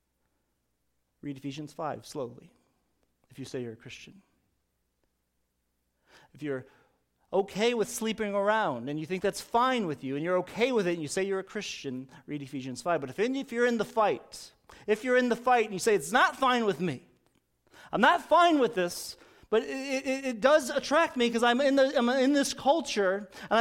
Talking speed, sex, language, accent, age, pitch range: 200 wpm, male, English, American, 40-59, 185-260 Hz